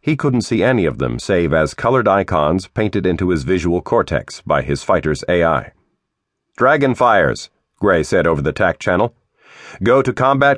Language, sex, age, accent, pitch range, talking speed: English, male, 40-59, American, 90-130 Hz, 170 wpm